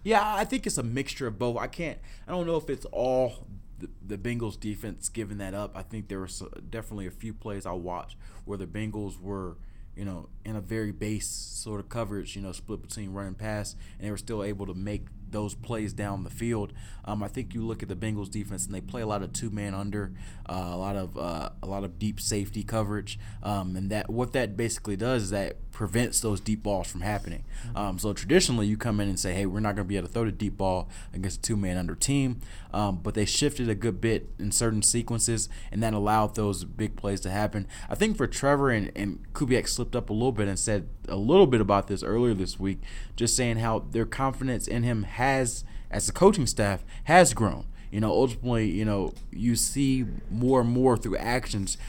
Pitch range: 100-120 Hz